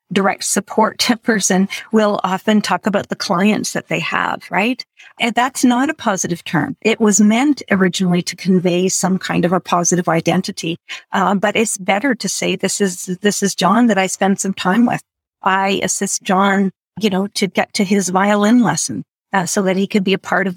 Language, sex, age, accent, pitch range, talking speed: English, female, 50-69, American, 185-220 Hz, 200 wpm